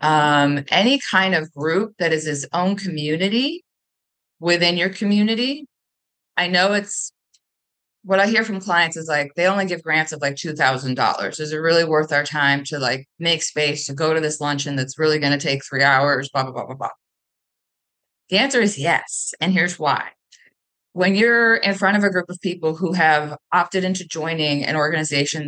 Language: English